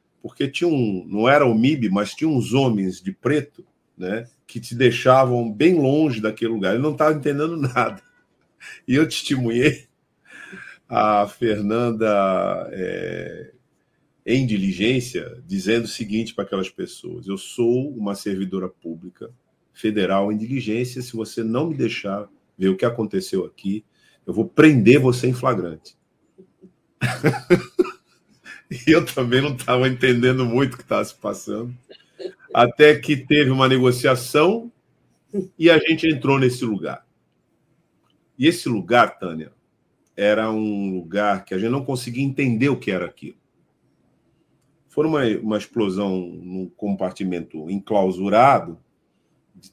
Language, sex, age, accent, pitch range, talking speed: Portuguese, male, 50-69, Brazilian, 100-130 Hz, 135 wpm